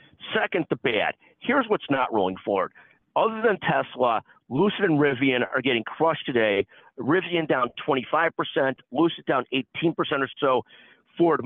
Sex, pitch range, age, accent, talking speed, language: male, 130-165 Hz, 50-69, American, 140 wpm, English